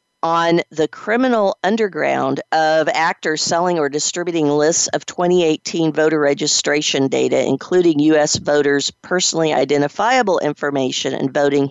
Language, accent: English, American